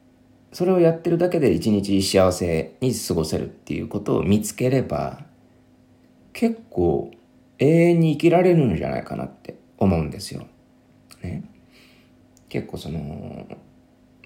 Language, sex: Japanese, male